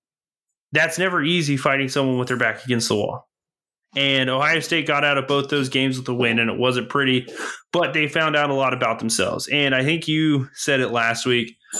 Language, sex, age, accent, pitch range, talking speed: English, male, 20-39, American, 125-150 Hz, 220 wpm